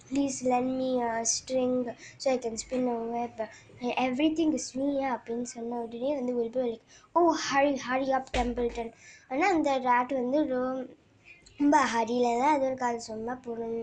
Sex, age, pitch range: male, 20-39, 230-275 Hz